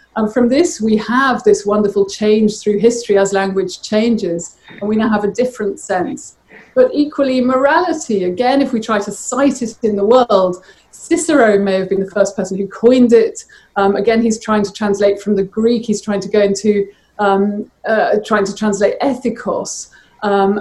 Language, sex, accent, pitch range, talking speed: English, female, British, 200-240 Hz, 185 wpm